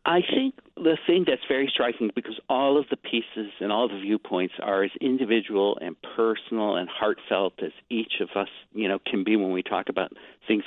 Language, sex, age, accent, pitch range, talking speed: English, male, 60-79, American, 105-140 Hz, 200 wpm